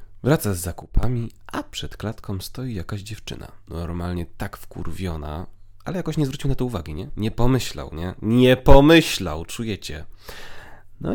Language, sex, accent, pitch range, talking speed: Polish, male, native, 90-110 Hz, 145 wpm